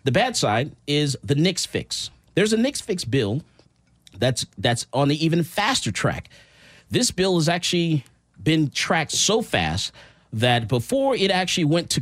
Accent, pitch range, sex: American, 125-180 Hz, male